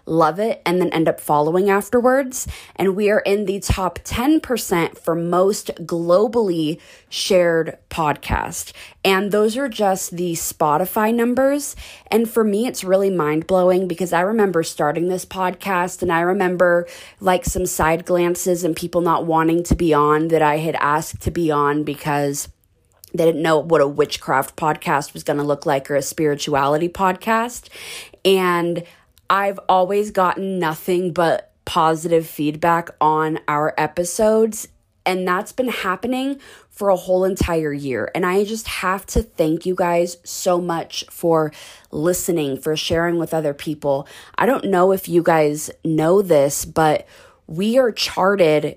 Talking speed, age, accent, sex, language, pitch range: 155 wpm, 20-39, American, female, English, 155-190 Hz